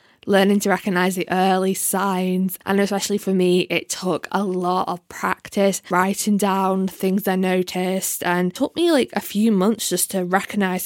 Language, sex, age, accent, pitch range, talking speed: English, female, 10-29, British, 180-210 Hz, 175 wpm